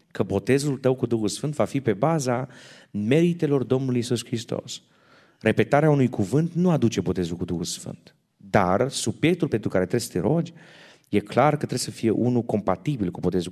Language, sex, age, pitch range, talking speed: Romanian, male, 30-49, 95-130 Hz, 180 wpm